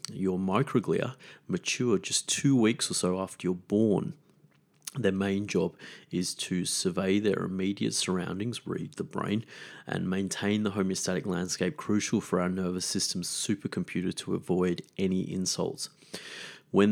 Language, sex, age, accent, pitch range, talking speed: English, male, 30-49, Australian, 90-110 Hz, 140 wpm